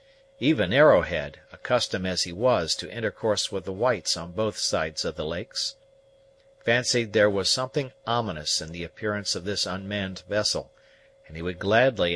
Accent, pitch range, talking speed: American, 100-135 Hz, 165 wpm